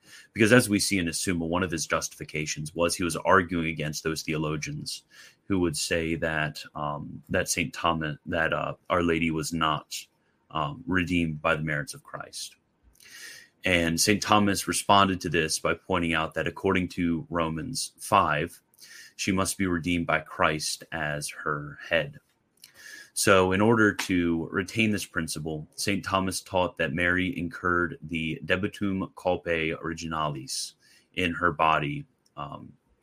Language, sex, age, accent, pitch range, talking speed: English, male, 30-49, American, 80-95 Hz, 150 wpm